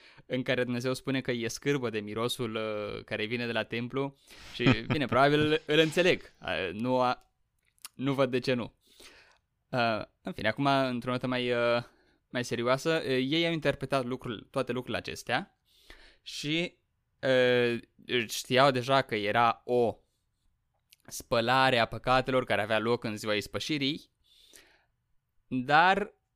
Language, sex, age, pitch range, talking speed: Romanian, male, 20-39, 115-145 Hz, 125 wpm